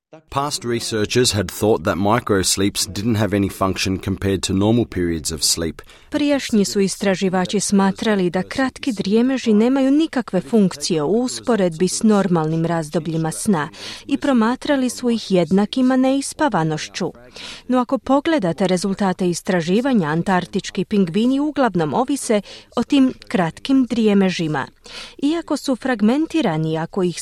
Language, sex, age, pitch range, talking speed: Croatian, female, 30-49, 175-255 Hz, 90 wpm